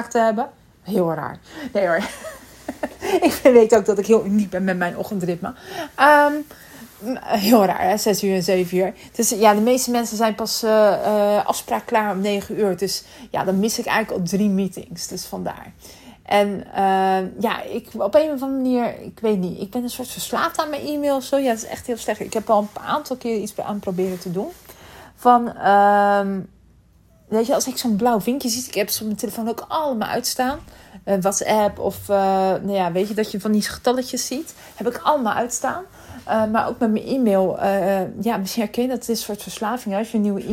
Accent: Dutch